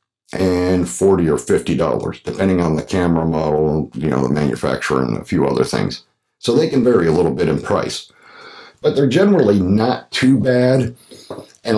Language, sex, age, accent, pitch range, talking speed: English, male, 50-69, American, 85-100 Hz, 175 wpm